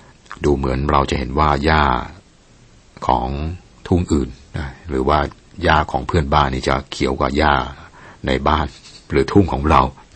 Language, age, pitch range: Thai, 60-79, 65-80 Hz